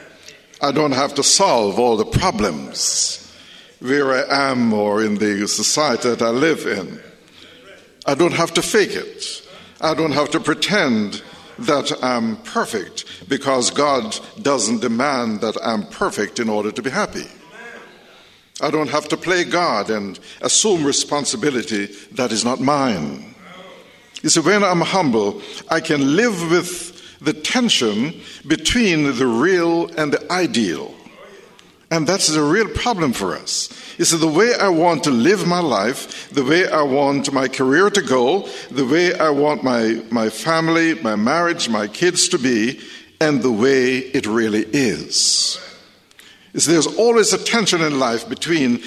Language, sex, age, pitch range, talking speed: English, male, 60-79, 130-175 Hz, 155 wpm